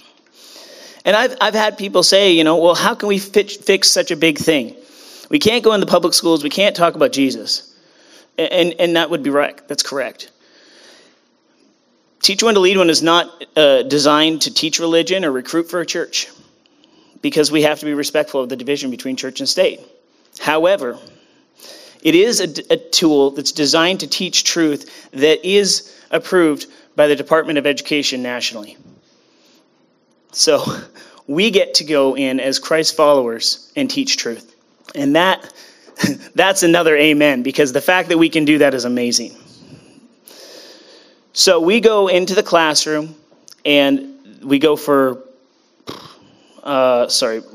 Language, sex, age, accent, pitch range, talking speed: English, male, 30-49, American, 145-195 Hz, 160 wpm